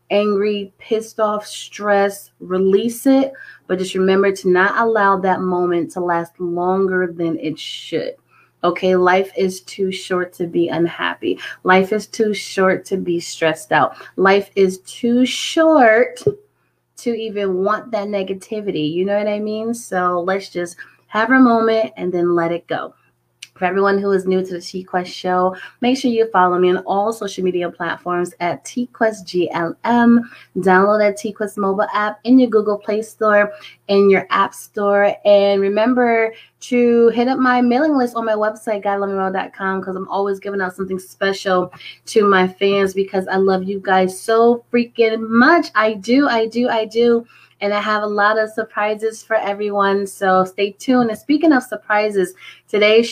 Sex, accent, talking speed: female, American, 170 wpm